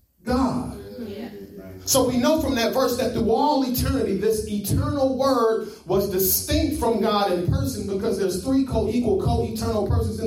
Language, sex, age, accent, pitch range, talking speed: English, male, 30-49, American, 215-275 Hz, 160 wpm